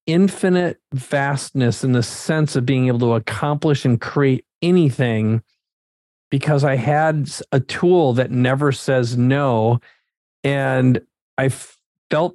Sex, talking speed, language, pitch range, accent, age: male, 120 wpm, English, 125-160 Hz, American, 40-59